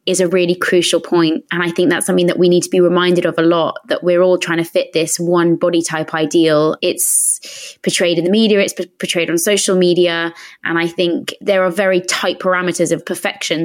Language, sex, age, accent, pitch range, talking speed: English, female, 20-39, British, 170-190 Hz, 220 wpm